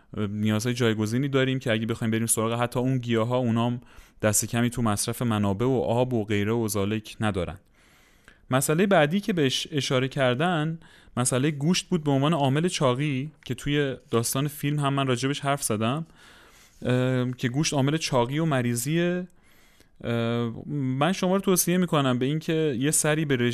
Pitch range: 110-140 Hz